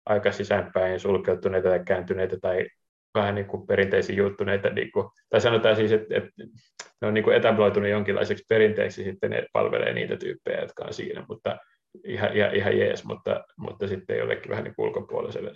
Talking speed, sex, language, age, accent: 160 wpm, male, Finnish, 30-49, native